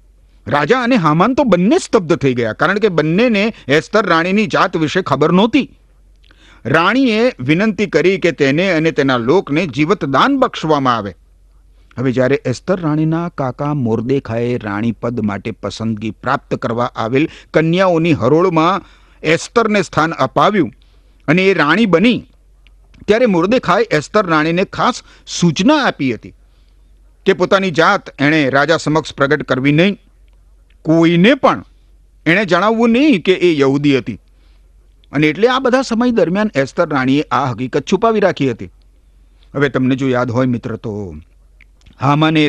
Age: 50-69